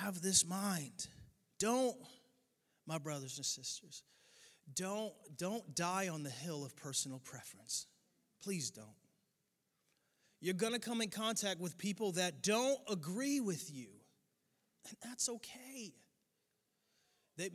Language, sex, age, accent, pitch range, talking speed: English, male, 30-49, American, 145-210 Hz, 125 wpm